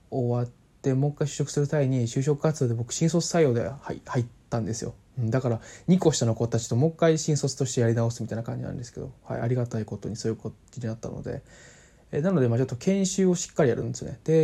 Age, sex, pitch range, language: 20-39, male, 115-155 Hz, Japanese